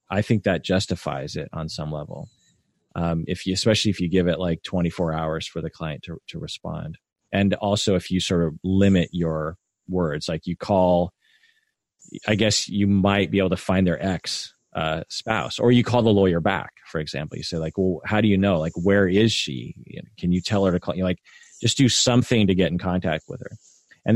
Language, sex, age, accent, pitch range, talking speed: English, male, 30-49, American, 85-105 Hz, 215 wpm